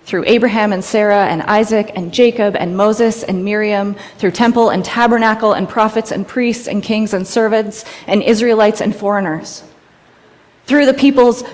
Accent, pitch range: American, 190-225 Hz